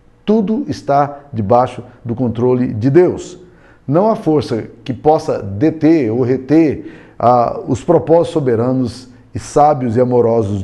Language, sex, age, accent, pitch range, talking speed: Portuguese, male, 50-69, Brazilian, 120-165 Hz, 125 wpm